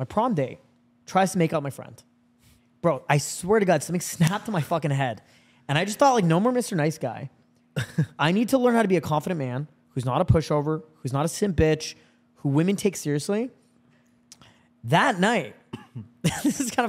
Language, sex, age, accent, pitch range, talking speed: English, male, 20-39, American, 130-180 Hz, 205 wpm